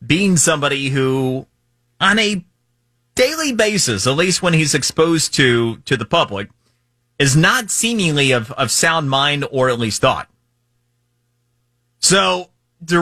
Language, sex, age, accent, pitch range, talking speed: English, male, 30-49, American, 120-160 Hz, 135 wpm